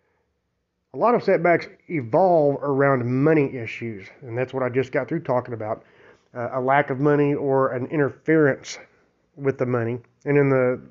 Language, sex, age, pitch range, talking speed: English, male, 30-49, 125-145 Hz, 170 wpm